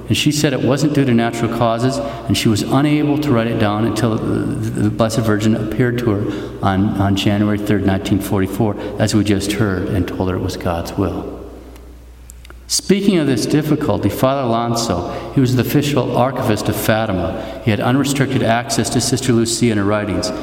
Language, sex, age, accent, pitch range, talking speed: English, male, 50-69, American, 105-140 Hz, 190 wpm